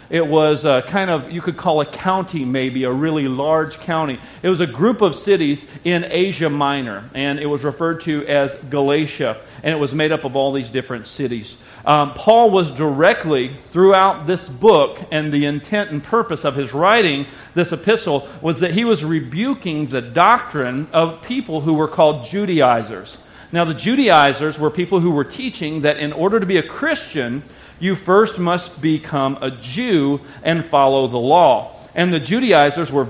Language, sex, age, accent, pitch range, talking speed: English, male, 40-59, American, 145-200 Hz, 180 wpm